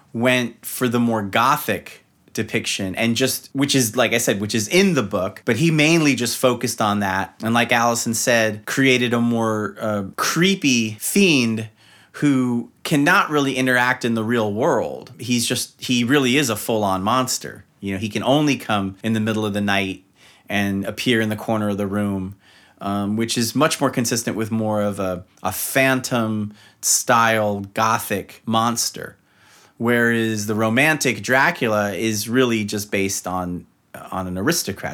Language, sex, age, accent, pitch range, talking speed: English, male, 30-49, American, 105-125 Hz, 170 wpm